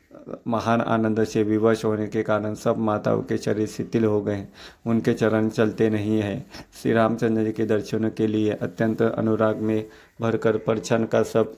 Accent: native